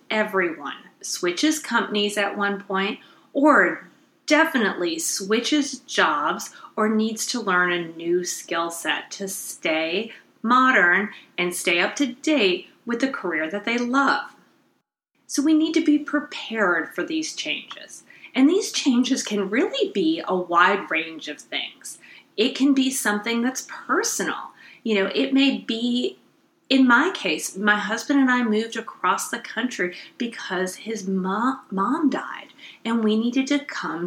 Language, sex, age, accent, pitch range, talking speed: English, female, 30-49, American, 195-295 Hz, 145 wpm